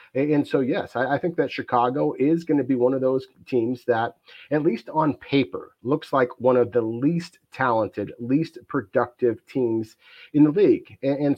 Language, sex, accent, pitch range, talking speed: English, male, American, 120-140 Hz, 180 wpm